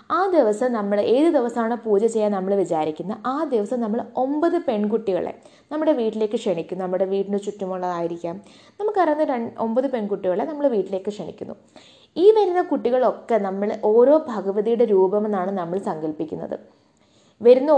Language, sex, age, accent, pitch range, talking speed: Malayalam, female, 20-39, native, 200-255 Hz, 120 wpm